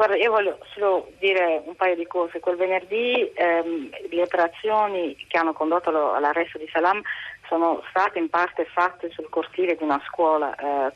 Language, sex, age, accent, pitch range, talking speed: Italian, female, 30-49, native, 155-190 Hz, 170 wpm